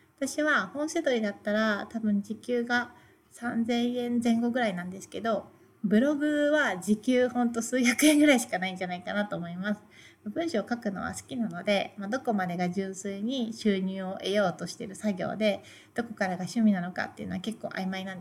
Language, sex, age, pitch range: Japanese, female, 30-49, 190-240 Hz